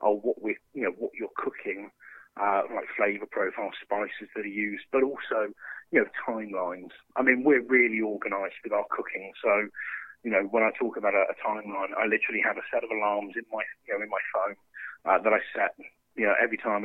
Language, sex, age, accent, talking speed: English, male, 30-49, British, 215 wpm